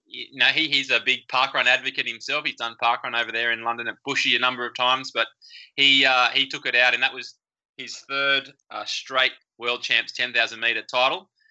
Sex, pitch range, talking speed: male, 120-140 Hz, 210 wpm